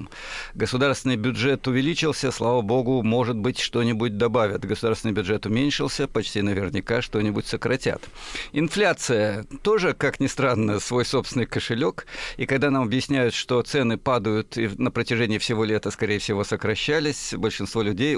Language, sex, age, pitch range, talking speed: Russian, male, 50-69, 115-140 Hz, 135 wpm